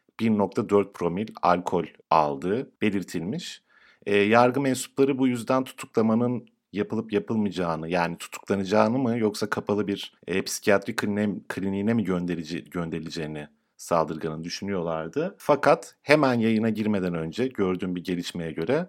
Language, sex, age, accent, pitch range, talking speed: Turkish, male, 50-69, native, 90-125 Hz, 115 wpm